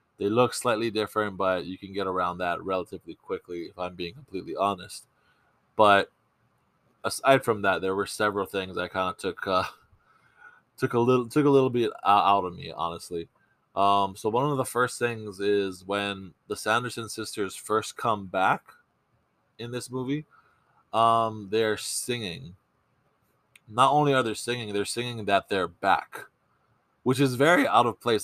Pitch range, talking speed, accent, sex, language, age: 95-125 Hz, 165 wpm, American, male, English, 20-39